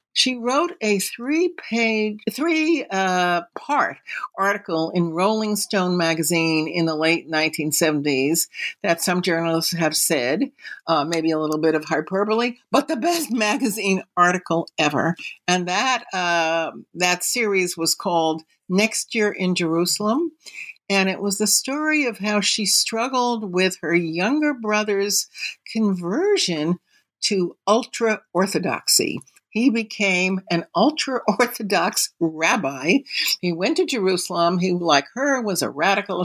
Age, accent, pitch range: 60-79, American, 170-250 Hz